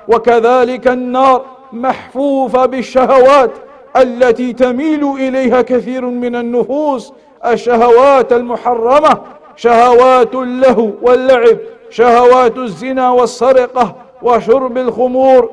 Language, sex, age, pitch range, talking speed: English, male, 50-69, 230-255 Hz, 75 wpm